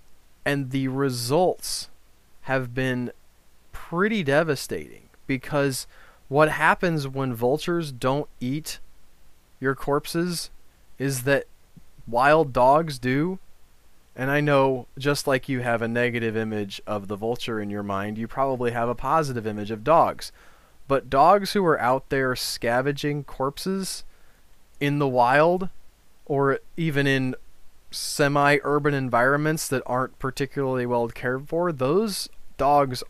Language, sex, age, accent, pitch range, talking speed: English, male, 20-39, American, 110-145 Hz, 125 wpm